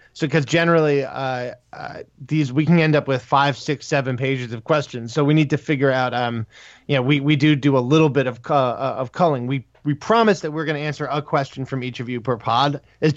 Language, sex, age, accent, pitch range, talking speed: English, male, 20-39, American, 125-150 Hz, 245 wpm